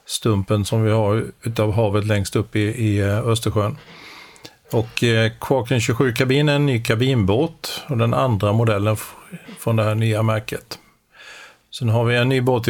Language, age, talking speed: Swedish, 50-69, 145 wpm